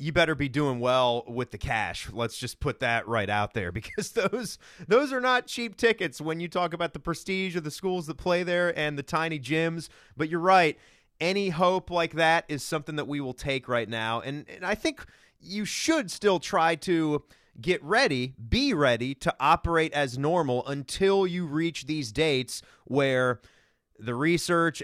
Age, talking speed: 30-49, 190 wpm